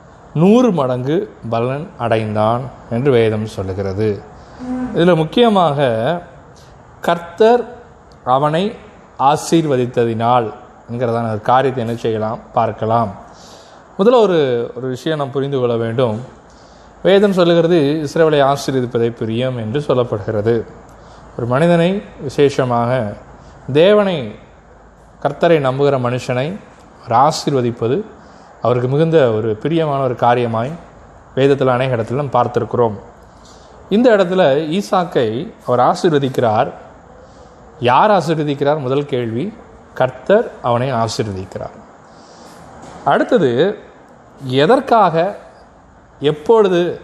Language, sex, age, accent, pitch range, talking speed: Tamil, male, 20-39, native, 115-160 Hz, 85 wpm